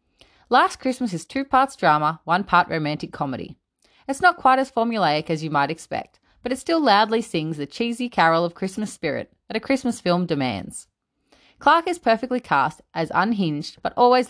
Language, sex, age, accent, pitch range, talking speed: English, female, 30-49, Australian, 160-255 Hz, 180 wpm